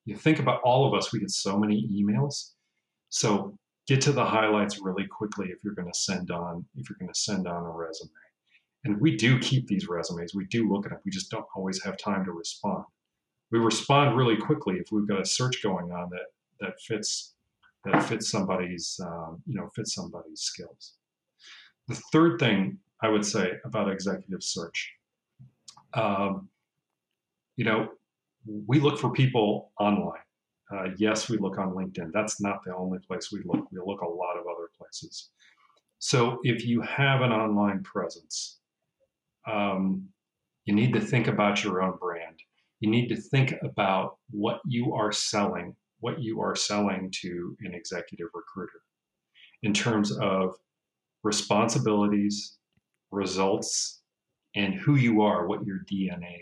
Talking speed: 165 wpm